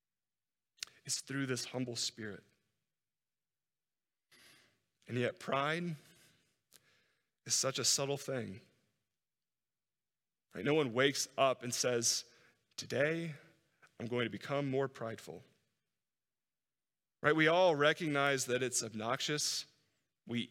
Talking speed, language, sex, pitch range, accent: 100 wpm, English, male, 120-145 Hz, American